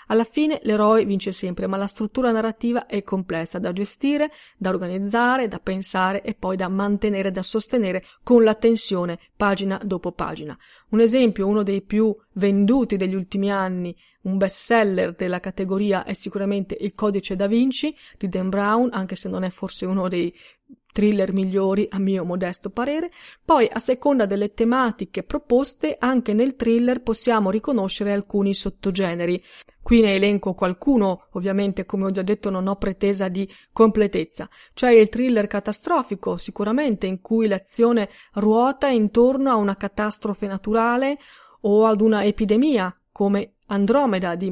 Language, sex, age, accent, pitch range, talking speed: Italian, female, 30-49, native, 195-230 Hz, 150 wpm